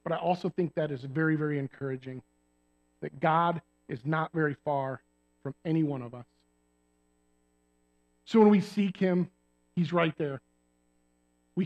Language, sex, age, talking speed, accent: English, male, 40-59, 150 wpm, American